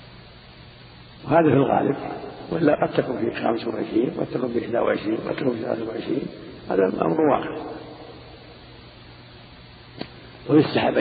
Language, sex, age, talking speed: Arabic, male, 50-69, 120 wpm